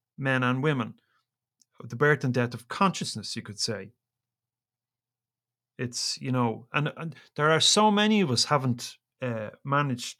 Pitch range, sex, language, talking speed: 120-145 Hz, male, English, 155 wpm